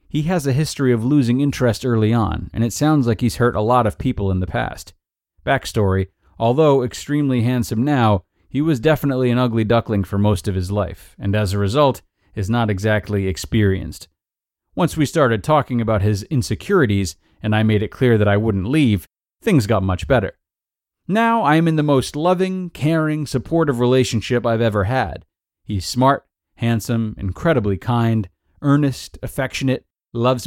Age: 30-49